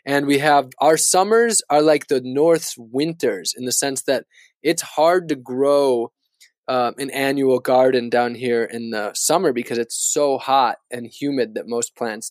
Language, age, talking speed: English, 20-39, 175 wpm